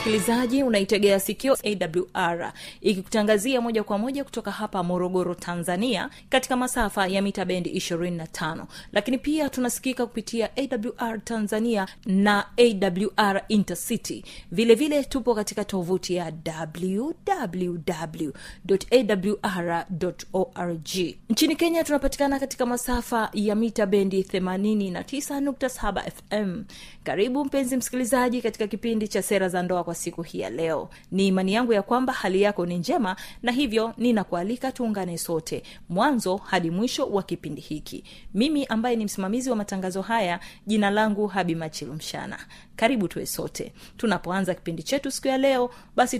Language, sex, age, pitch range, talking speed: Swahili, female, 30-49, 185-240 Hz, 125 wpm